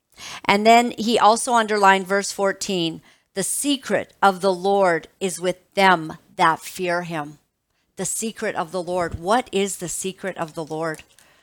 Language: English